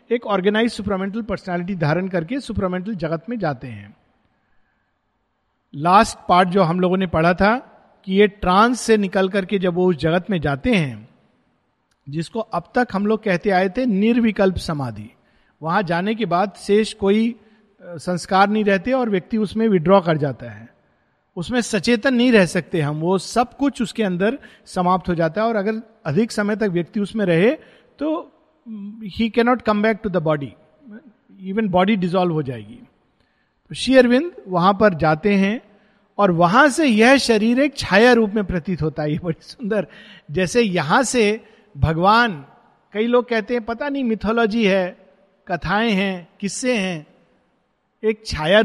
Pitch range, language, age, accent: 180-235 Hz, Hindi, 50-69, native